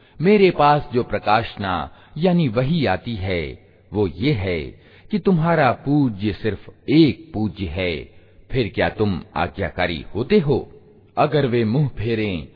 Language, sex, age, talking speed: Hindi, male, 50-69, 135 wpm